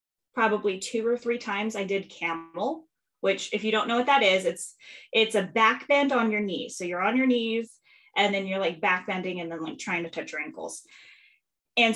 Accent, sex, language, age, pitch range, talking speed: American, female, English, 10-29, 185-235 Hz, 215 wpm